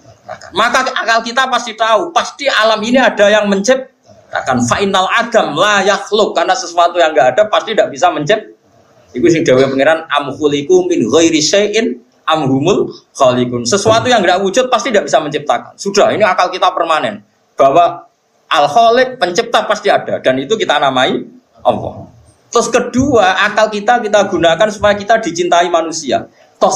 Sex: male